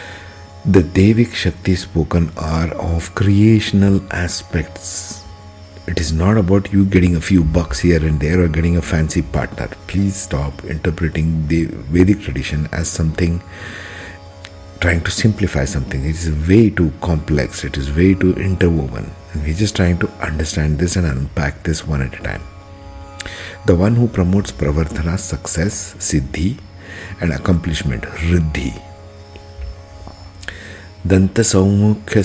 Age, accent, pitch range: 50-69, Indian, 85-95 Hz